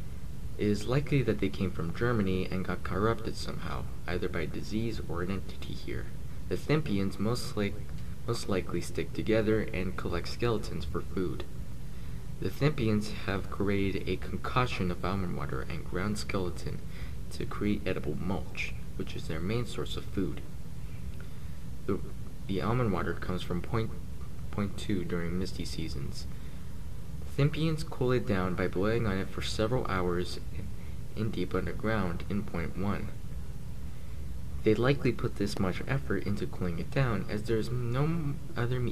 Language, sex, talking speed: English, male, 150 wpm